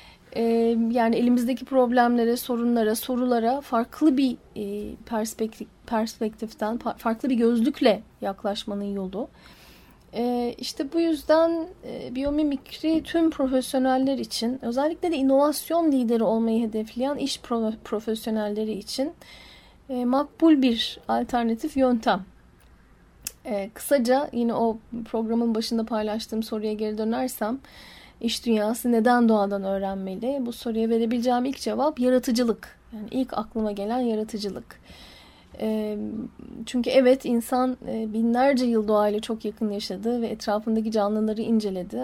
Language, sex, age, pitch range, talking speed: Turkish, female, 10-29, 220-255 Hz, 100 wpm